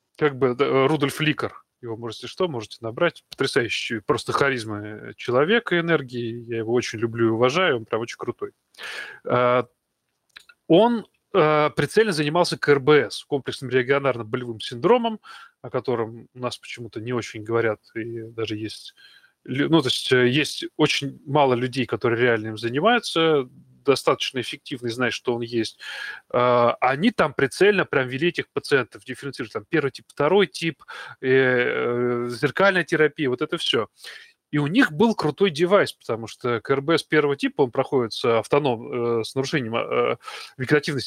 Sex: male